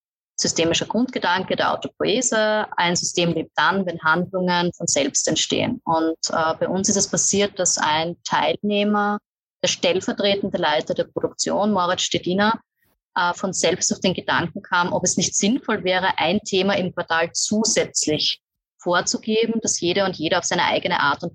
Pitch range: 175-205 Hz